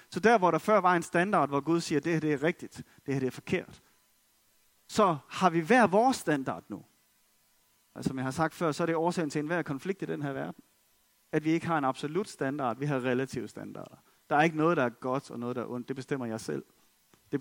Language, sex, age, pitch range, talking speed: Danish, male, 30-49, 150-230 Hz, 255 wpm